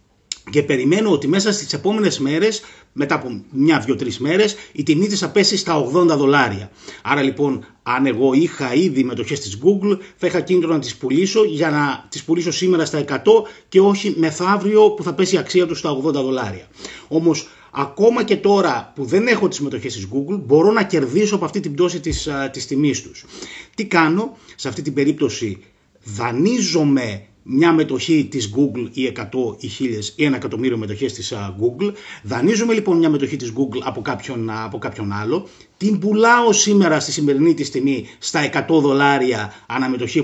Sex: male